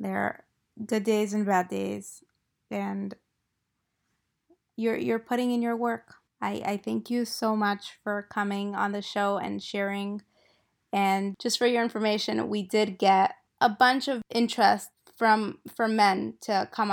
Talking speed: 155 wpm